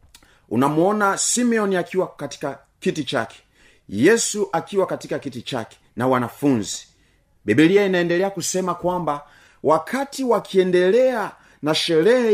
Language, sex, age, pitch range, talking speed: Swahili, male, 40-59, 120-180 Hz, 100 wpm